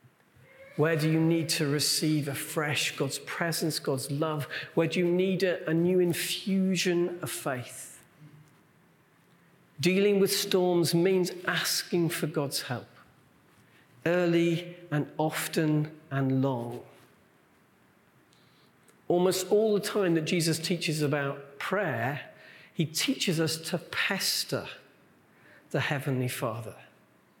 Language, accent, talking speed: English, British, 110 wpm